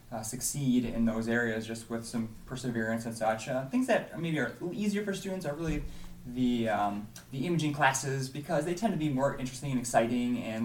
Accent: American